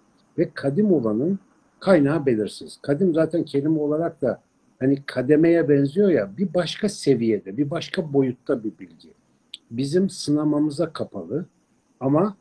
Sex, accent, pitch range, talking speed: male, native, 125-170 Hz, 125 wpm